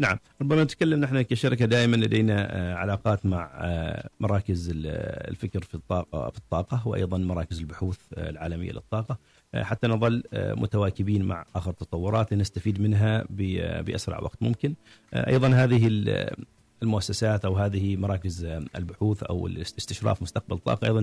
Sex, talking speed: male, 125 wpm